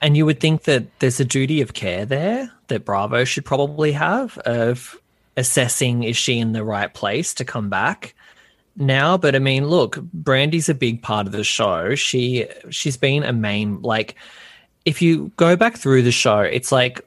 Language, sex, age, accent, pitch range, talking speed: English, male, 20-39, Australian, 100-130 Hz, 185 wpm